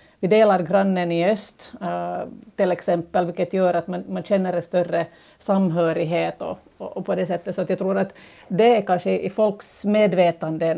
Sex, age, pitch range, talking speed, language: female, 50-69, 170-200 Hz, 190 wpm, Swedish